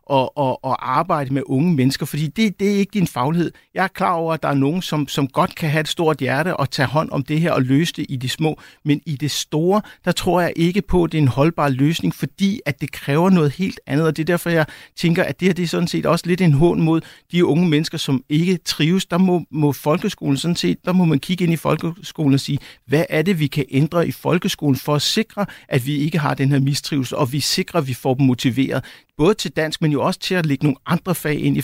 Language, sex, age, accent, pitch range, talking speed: Danish, male, 60-79, native, 140-175 Hz, 270 wpm